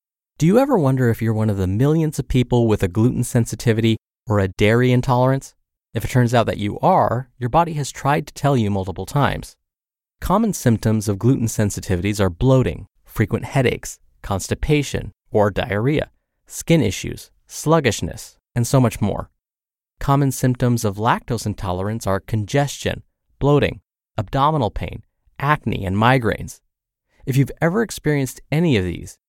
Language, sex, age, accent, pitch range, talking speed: English, male, 30-49, American, 105-140 Hz, 155 wpm